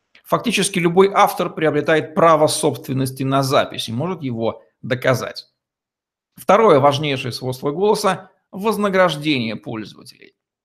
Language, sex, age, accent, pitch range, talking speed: Russian, male, 50-69, native, 135-185 Hz, 105 wpm